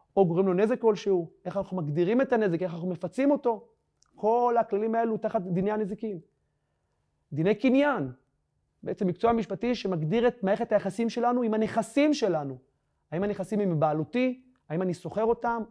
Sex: male